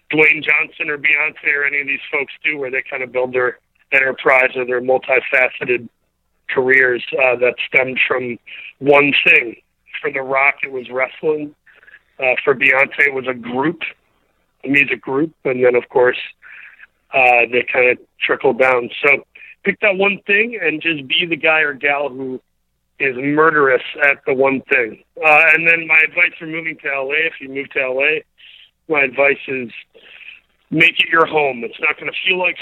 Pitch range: 130-155 Hz